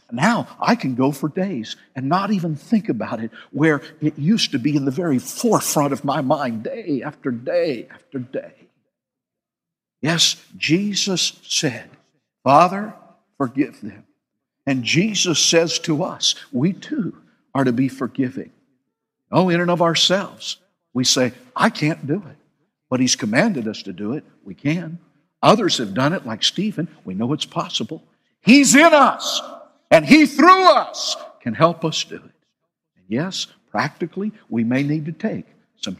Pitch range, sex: 130-205 Hz, male